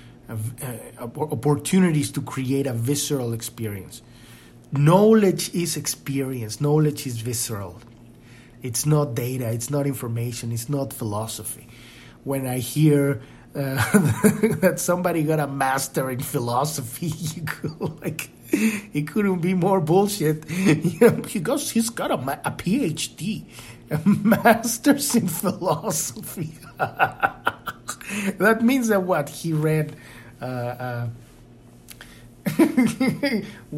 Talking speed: 110 wpm